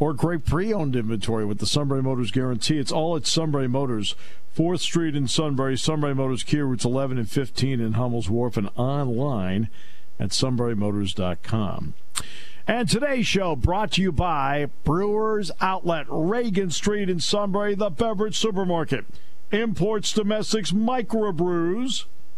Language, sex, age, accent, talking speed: English, male, 50-69, American, 135 wpm